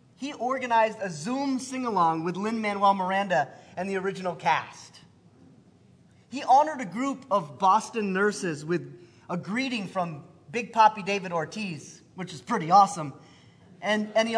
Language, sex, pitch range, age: English, male, 175-230 Hz, 30-49